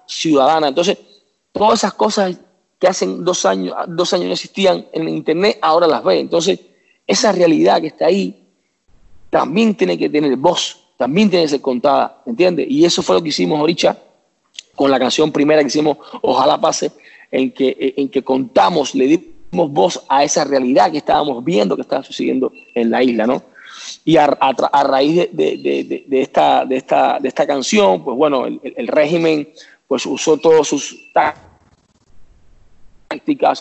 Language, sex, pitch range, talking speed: Spanish, male, 130-175 Hz, 155 wpm